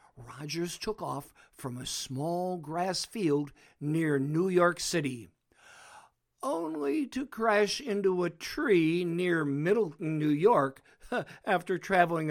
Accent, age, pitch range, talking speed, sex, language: American, 60-79, 145-190 Hz, 115 wpm, male, English